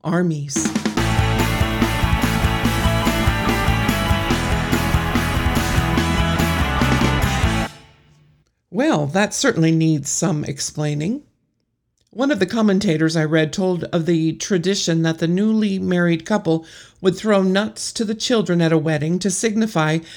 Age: 60-79